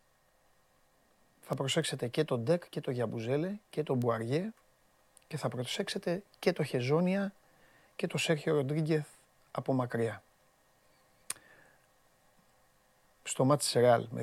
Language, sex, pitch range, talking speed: Greek, male, 115-160 Hz, 115 wpm